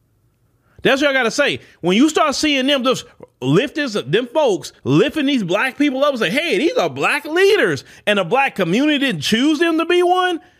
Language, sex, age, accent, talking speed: English, male, 30-49, American, 210 wpm